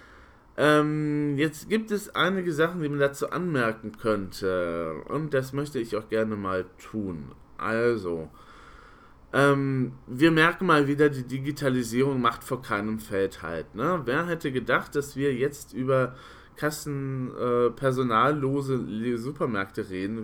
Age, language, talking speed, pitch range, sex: 20-39, German, 135 wpm, 120-150 Hz, male